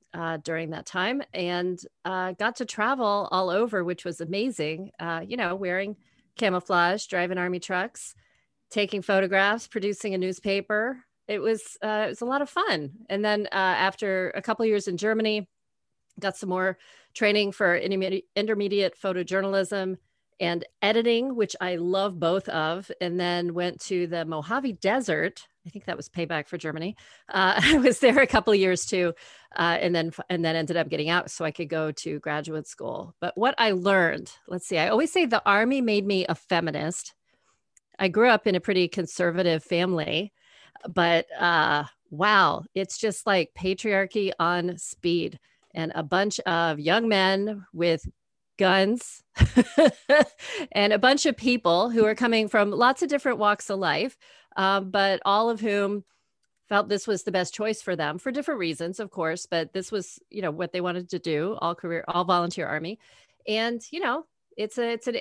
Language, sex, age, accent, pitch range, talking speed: English, female, 40-59, American, 175-215 Hz, 180 wpm